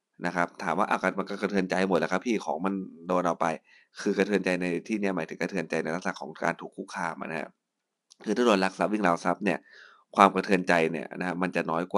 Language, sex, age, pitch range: Thai, male, 20-39, 85-100 Hz